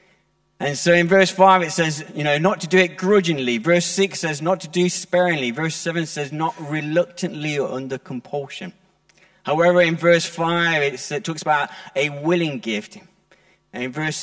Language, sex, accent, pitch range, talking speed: English, male, British, 145-185 Hz, 175 wpm